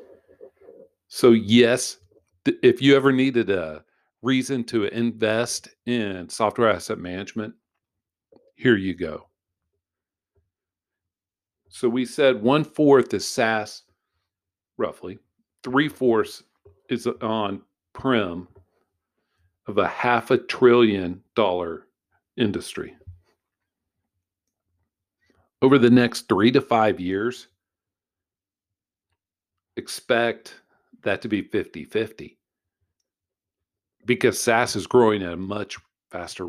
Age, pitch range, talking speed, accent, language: 50-69, 95-120 Hz, 95 wpm, American, English